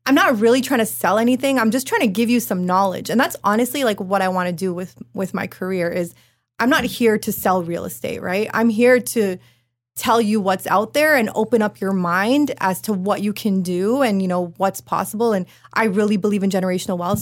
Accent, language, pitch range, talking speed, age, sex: American, English, 185-225 Hz, 235 wpm, 20-39, female